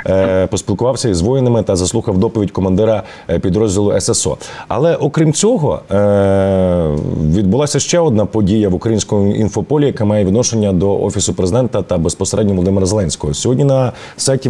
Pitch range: 100-135 Hz